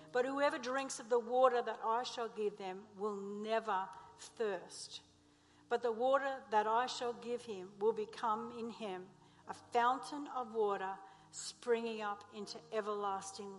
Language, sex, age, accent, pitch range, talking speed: English, female, 60-79, Australian, 220-270 Hz, 150 wpm